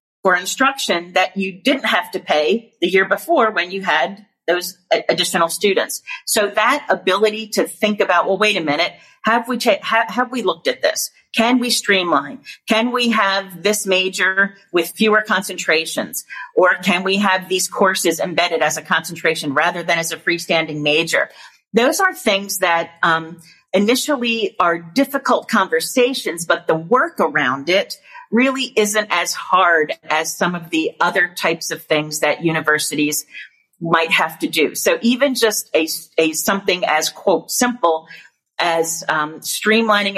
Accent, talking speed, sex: American, 155 wpm, female